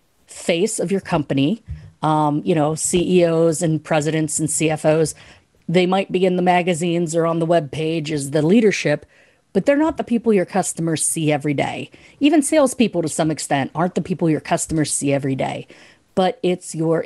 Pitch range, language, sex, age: 150-190 Hz, English, female, 40-59